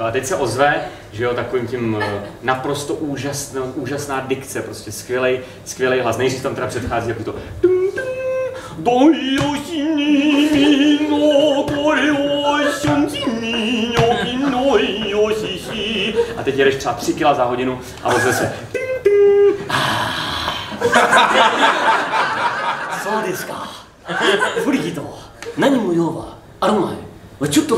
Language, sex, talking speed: Czech, male, 85 wpm